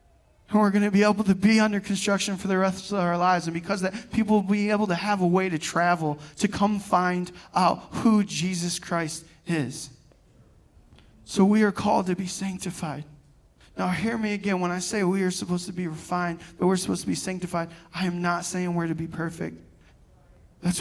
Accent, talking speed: American, 210 wpm